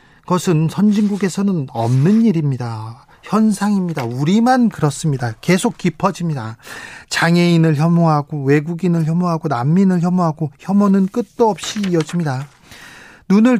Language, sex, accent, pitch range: Korean, male, native, 150-195 Hz